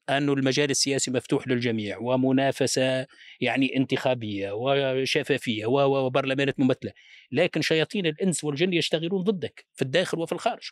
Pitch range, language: 120-175 Hz, Arabic